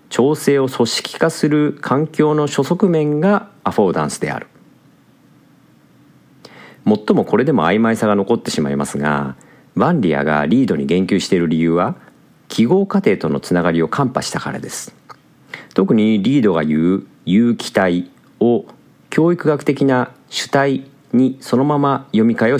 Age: 50-69